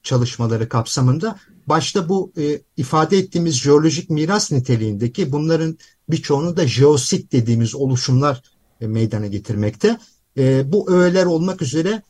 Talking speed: 120 wpm